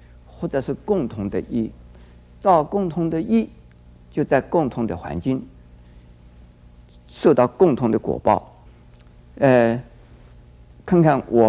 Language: Chinese